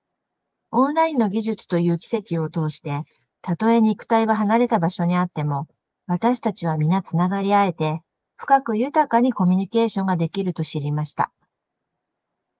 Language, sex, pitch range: Japanese, female, 160-225 Hz